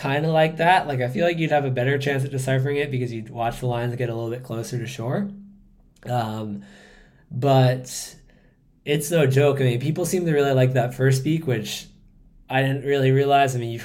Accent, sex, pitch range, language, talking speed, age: American, male, 110-130 Hz, English, 220 wpm, 20-39